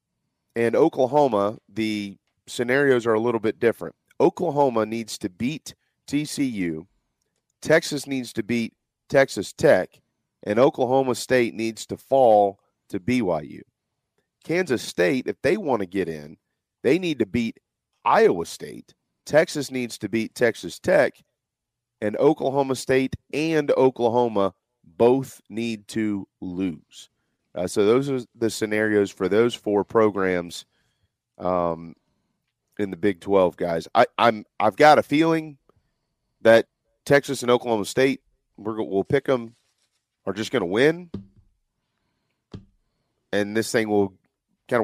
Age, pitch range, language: 40-59, 105-125 Hz, English